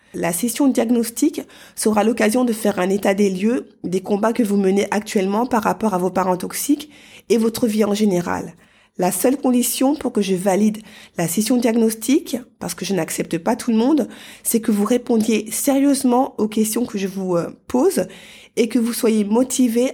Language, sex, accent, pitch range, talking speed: French, female, French, 210-255 Hz, 185 wpm